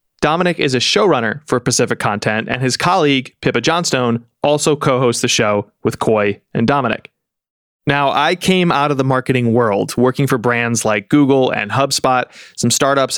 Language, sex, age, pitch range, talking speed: English, male, 20-39, 120-155 Hz, 175 wpm